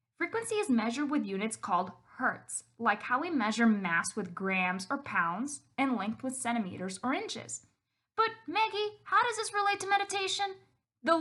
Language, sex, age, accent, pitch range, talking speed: English, female, 10-29, American, 220-335 Hz, 165 wpm